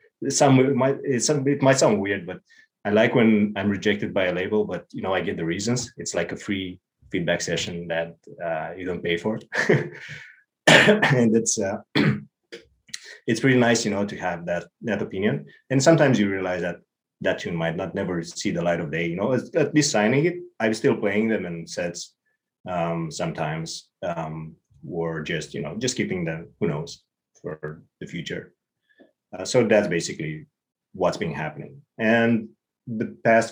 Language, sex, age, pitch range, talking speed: English, male, 30-49, 85-115 Hz, 185 wpm